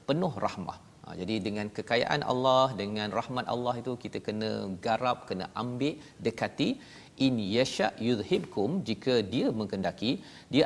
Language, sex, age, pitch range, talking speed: Malayalam, male, 40-59, 105-125 Hz, 135 wpm